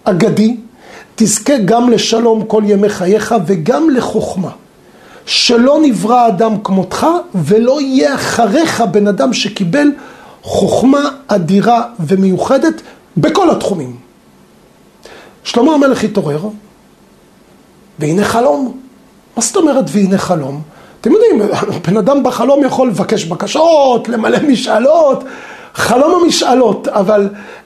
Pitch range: 210-275 Hz